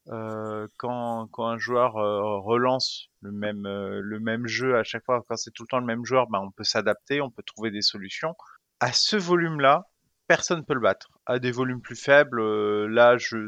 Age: 30-49